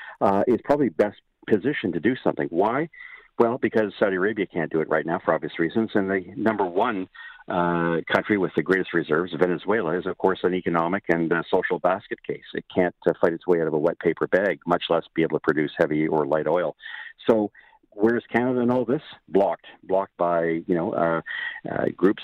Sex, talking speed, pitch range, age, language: male, 210 wpm, 85-100 Hz, 50-69, English